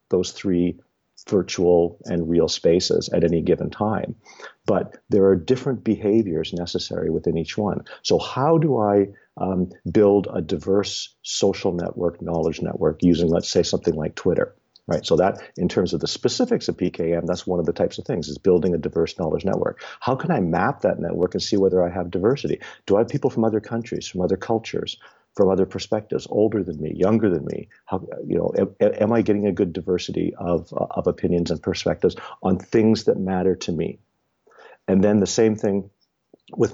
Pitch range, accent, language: 90-105 Hz, American, English